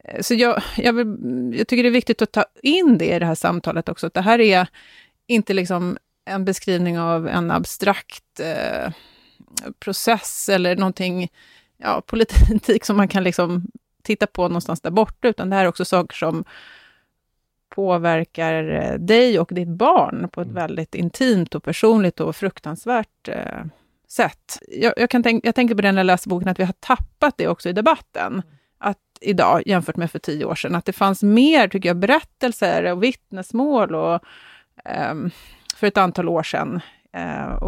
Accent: native